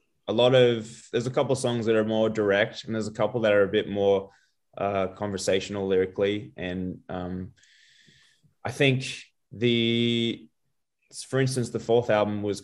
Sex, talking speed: male, 165 wpm